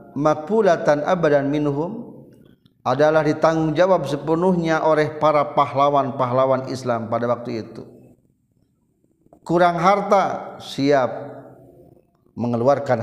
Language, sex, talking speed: Indonesian, male, 85 wpm